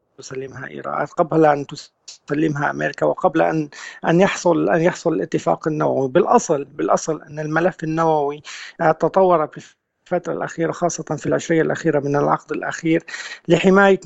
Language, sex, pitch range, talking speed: Arabic, male, 150-175 Hz, 130 wpm